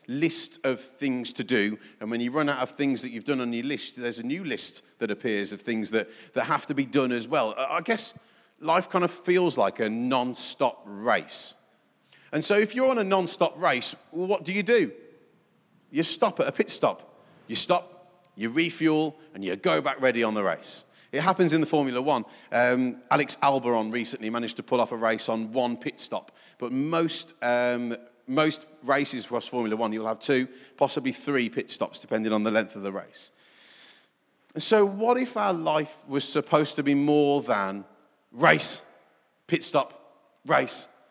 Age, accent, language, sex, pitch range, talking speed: 40-59, British, English, male, 115-160 Hz, 195 wpm